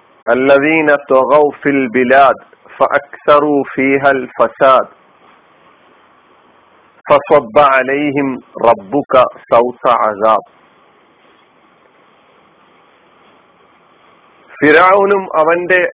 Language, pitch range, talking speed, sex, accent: Malayalam, 140-175 Hz, 55 wpm, male, native